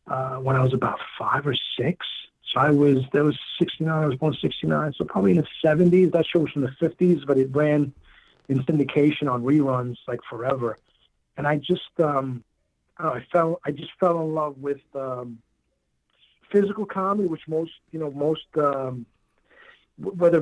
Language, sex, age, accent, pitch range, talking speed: English, male, 50-69, American, 135-160 Hz, 175 wpm